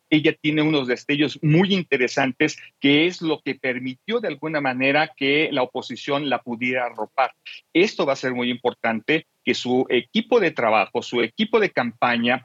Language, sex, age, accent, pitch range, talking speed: Spanish, male, 40-59, Mexican, 120-150 Hz, 170 wpm